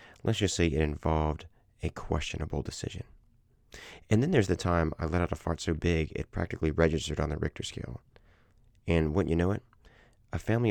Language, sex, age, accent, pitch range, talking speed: English, male, 30-49, American, 85-115 Hz, 190 wpm